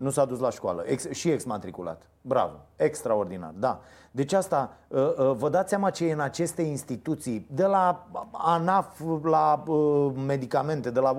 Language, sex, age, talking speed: Romanian, male, 30-49, 165 wpm